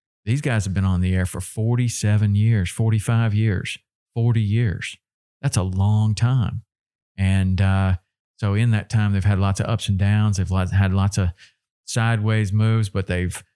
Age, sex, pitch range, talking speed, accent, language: 40-59, male, 95-115 Hz, 175 wpm, American, English